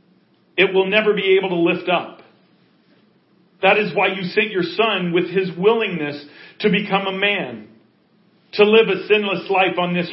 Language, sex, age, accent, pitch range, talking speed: English, male, 40-59, American, 165-195 Hz, 170 wpm